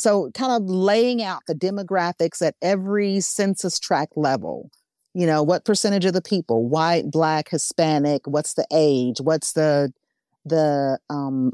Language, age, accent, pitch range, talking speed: English, 40-59, American, 150-185 Hz, 150 wpm